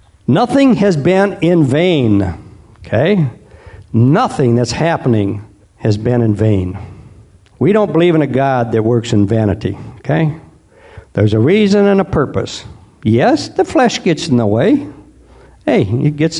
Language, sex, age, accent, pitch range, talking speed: English, male, 60-79, American, 115-175 Hz, 145 wpm